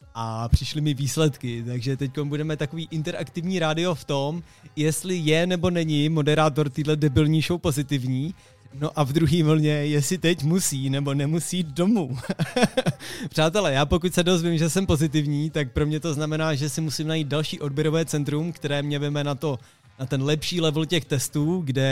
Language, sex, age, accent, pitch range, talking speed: Czech, male, 20-39, native, 130-155 Hz, 175 wpm